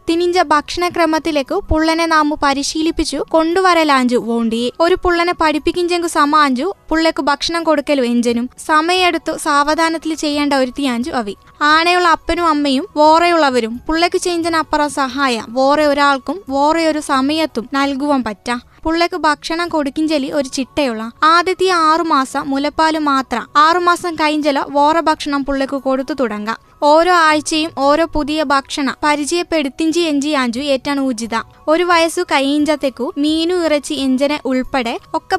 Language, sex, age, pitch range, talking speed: Malayalam, female, 20-39, 275-325 Hz, 120 wpm